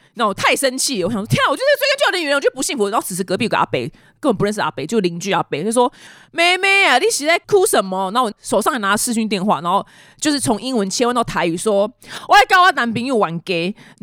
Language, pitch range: Chinese, 190-300 Hz